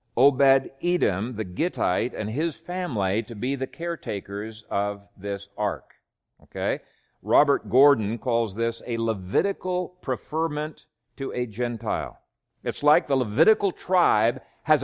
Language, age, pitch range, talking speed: English, 50-69, 110-150 Hz, 120 wpm